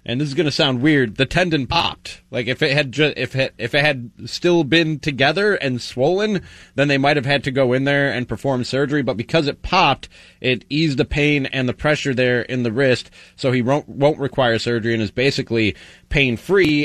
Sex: male